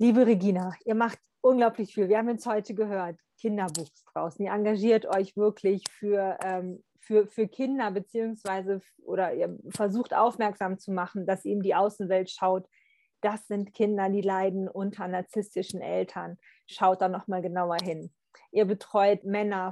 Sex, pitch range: female, 195-230 Hz